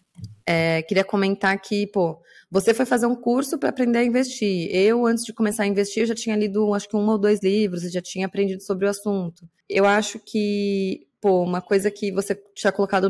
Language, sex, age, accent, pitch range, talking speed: Portuguese, female, 20-39, Brazilian, 195-245 Hz, 215 wpm